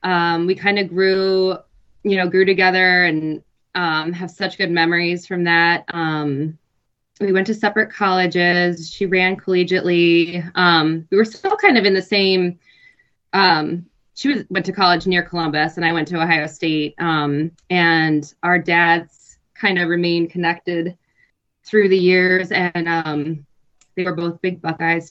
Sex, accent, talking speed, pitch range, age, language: female, American, 160 wpm, 155-180 Hz, 20-39, English